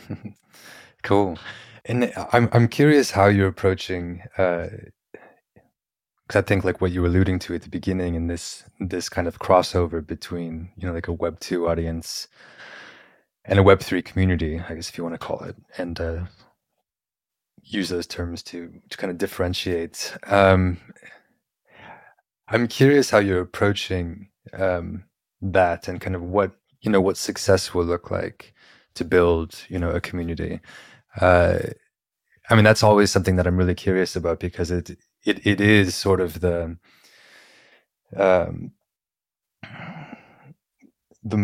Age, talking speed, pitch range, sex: 30-49, 150 wpm, 85-100 Hz, male